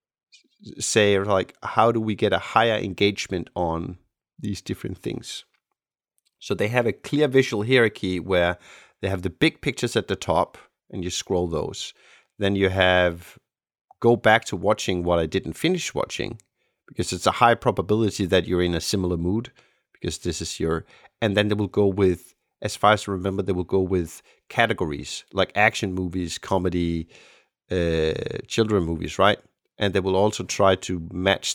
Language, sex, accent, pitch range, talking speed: English, male, Danish, 90-105 Hz, 175 wpm